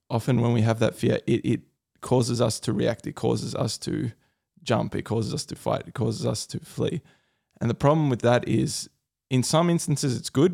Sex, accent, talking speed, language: male, Australian, 215 wpm, English